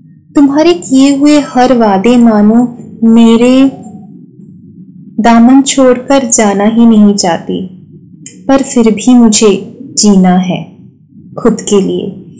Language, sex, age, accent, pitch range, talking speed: Hindi, female, 20-39, native, 185-250 Hz, 110 wpm